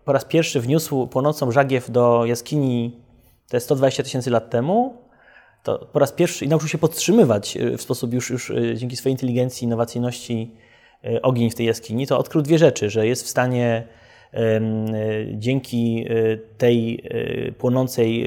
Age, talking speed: 20-39, 150 wpm